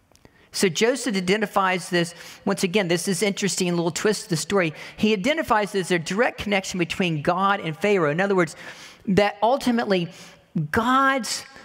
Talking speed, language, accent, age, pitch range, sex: 160 wpm, English, American, 40-59, 180-230 Hz, male